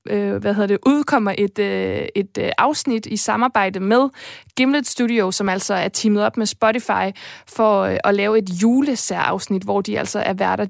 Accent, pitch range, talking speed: native, 195-230 Hz, 165 wpm